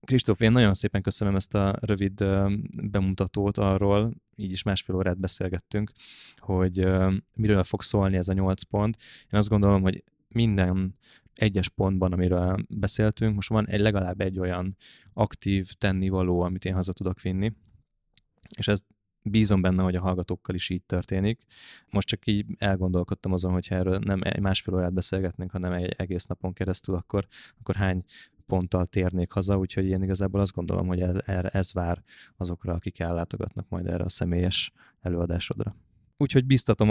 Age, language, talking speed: 20-39, Hungarian, 160 wpm